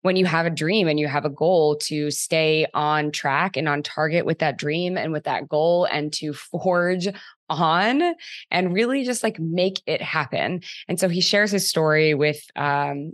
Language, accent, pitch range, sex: English, American, 145-170 Hz, female